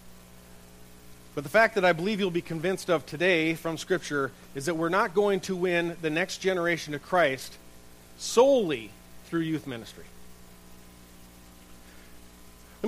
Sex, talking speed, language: male, 140 wpm, English